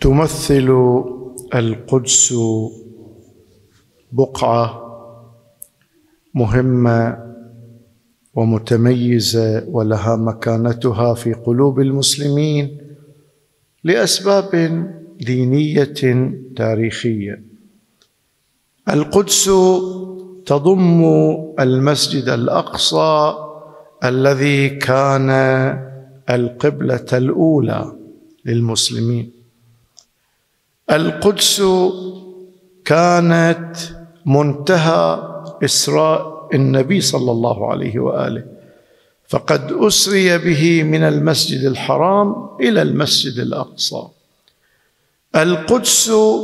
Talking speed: 55 wpm